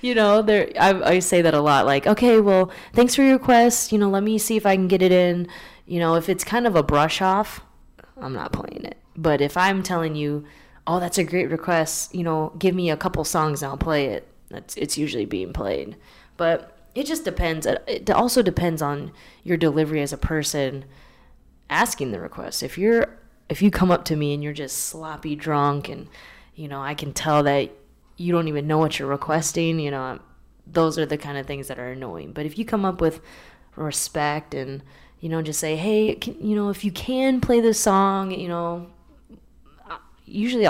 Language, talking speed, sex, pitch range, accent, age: English, 210 wpm, female, 145-185 Hz, American, 20-39